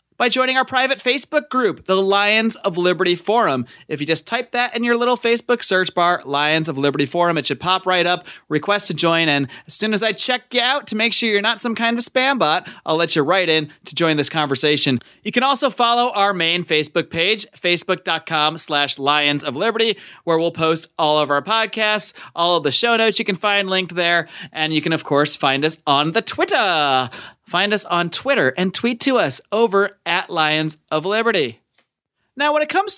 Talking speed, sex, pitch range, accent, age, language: 210 wpm, male, 155-235 Hz, American, 30-49, English